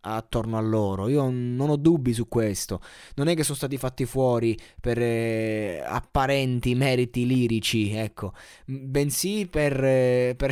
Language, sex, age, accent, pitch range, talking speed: Italian, male, 20-39, native, 120-160 Hz, 150 wpm